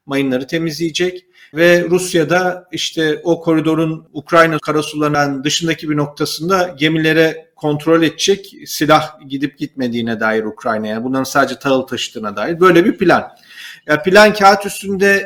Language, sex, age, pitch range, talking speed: Turkish, male, 40-59, 150-180 Hz, 130 wpm